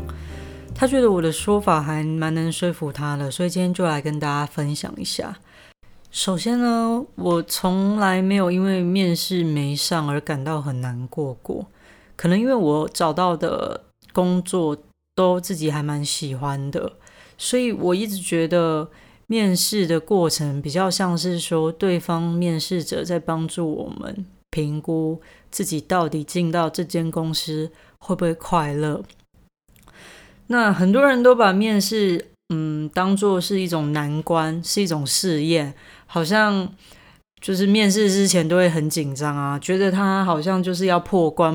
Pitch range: 155-190 Hz